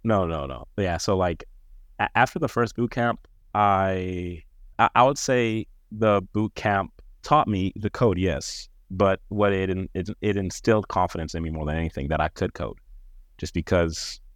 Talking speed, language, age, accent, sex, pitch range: 185 wpm, English, 30-49, American, male, 80-105 Hz